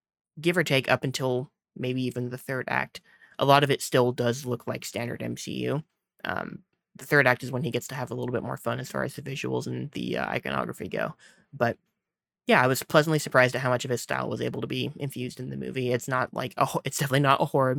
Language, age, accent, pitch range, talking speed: English, 20-39, American, 125-140 Hz, 250 wpm